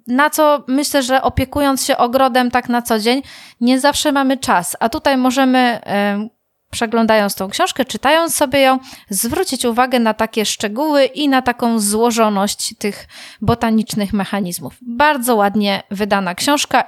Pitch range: 210-270 Hz